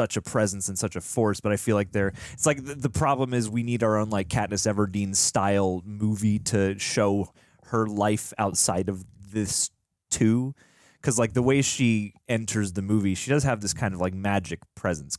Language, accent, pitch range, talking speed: English, American, 95-120 Hz, 205 wpm